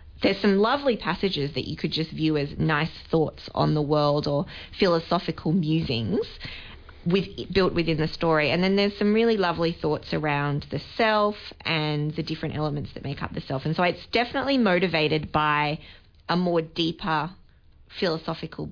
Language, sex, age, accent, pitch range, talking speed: English, female, 20-39, Australian, 150-185 Hz, 165 wpm